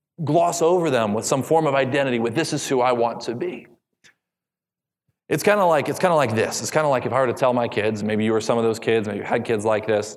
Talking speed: 270 wpm